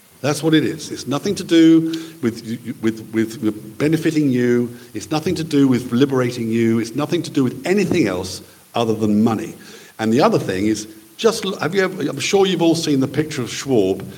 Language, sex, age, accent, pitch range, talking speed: English, male, 50-69, British, 110-170 Hz, 205 wpm